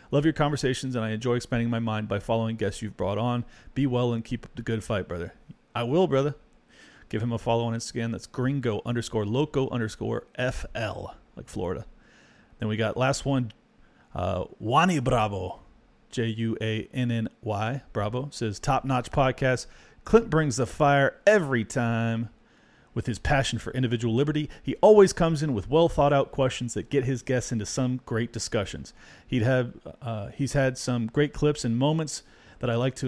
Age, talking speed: 40-59, 170 wpm